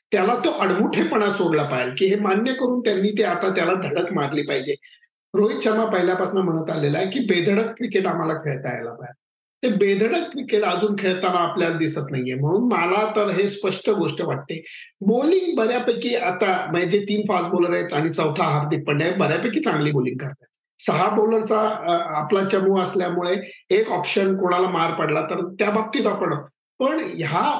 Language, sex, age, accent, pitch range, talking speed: Marathi, male, 50-69, native, 165-220 Hz, 165 wpm